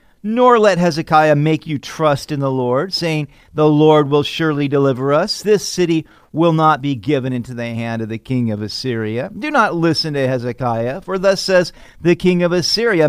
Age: 40-59